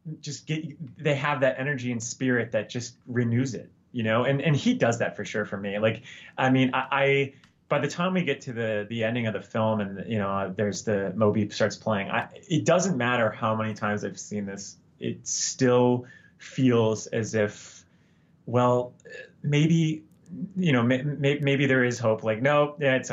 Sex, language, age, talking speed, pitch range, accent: male, English, 20-39, 200 wpm, 105-130 Hz, American